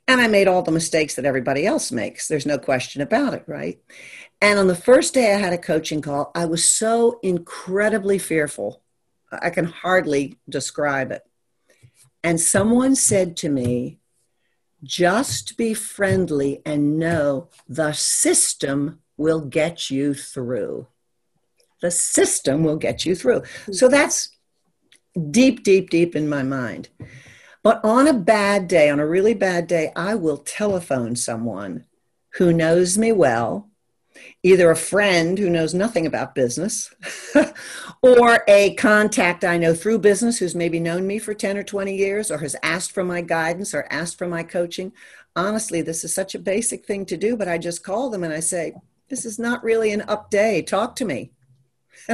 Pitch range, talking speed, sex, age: 155-220 Hz, 170 wpm, female, 60-79